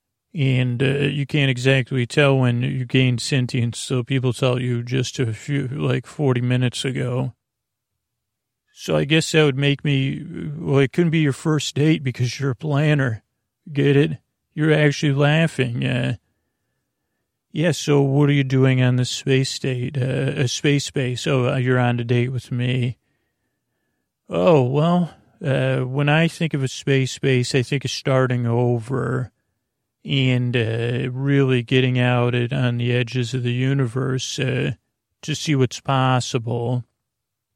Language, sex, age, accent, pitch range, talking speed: English, male, 40-59, American, 125-140 Hz, 155 wpm